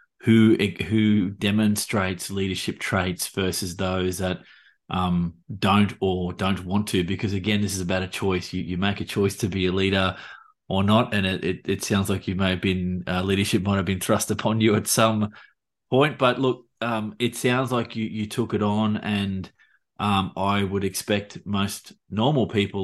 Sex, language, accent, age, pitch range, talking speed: male, English, Australian, 20-39, 95-105 Hz, 190 wpm